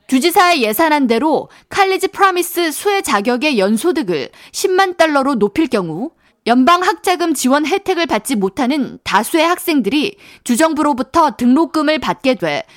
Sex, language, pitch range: female, Korean, 245-340 Hz